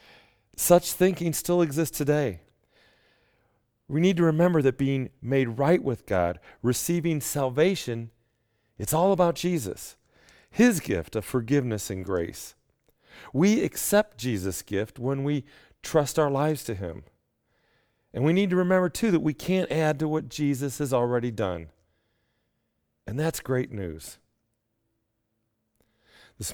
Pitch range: 110-150 Hz